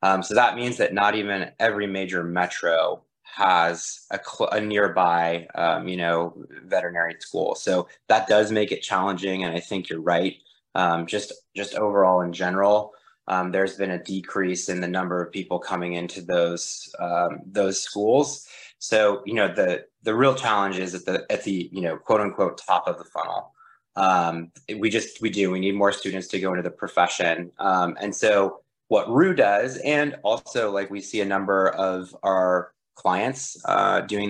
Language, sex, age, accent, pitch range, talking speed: English, male, 20-39, American, 90-105 Hz, 185 wpm